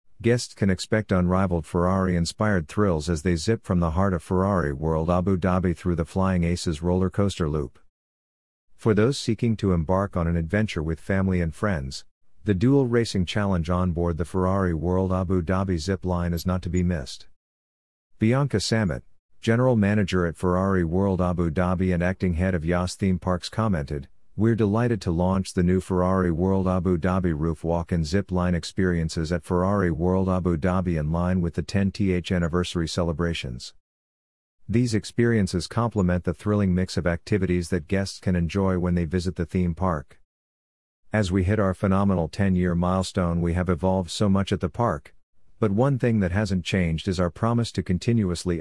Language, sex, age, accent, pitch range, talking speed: English, male, 50-69, American, 85-100 Hz, 175 wpm